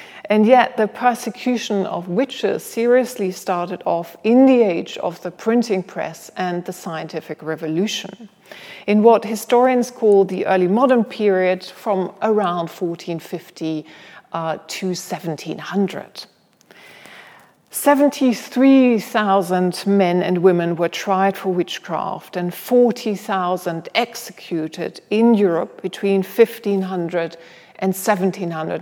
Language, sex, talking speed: English, female, 105 wpm